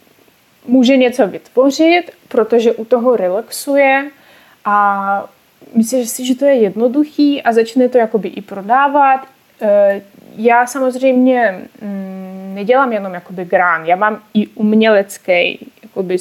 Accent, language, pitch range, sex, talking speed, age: native, Czech, 205-255 Hz, female, 110 wpm, 20-39